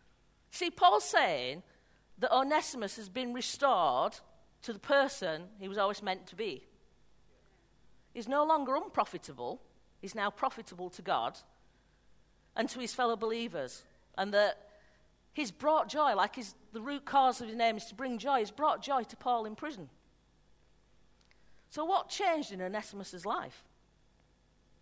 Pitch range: 195-265 Hz